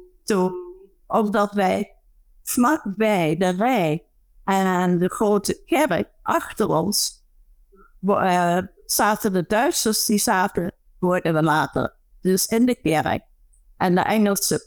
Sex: female